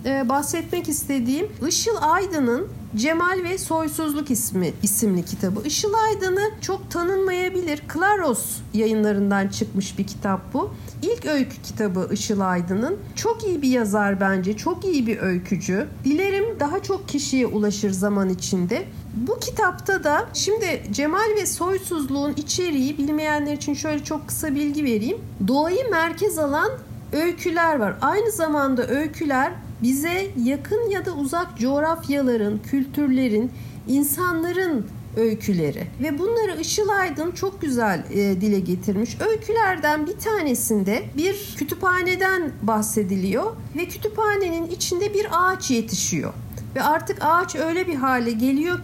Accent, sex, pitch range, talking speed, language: native, female, 220-360 Hz, 125 wpm, Turkish